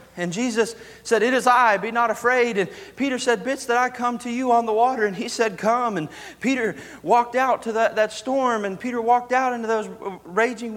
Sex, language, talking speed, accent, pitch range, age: male, English, 225 wpm, American, 210-255 Hz, 40-59